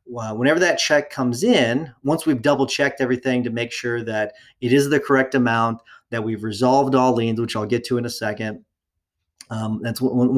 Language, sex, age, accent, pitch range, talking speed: English, male, 30-49, American, 115-130 Hz, 190 wpm